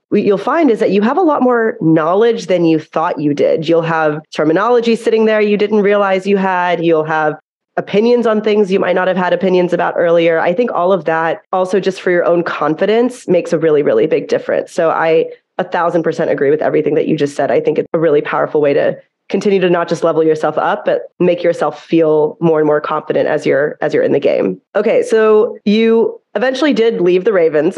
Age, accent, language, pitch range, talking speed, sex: 30-49, American, English, 170-235 Hz, 230 wpm, female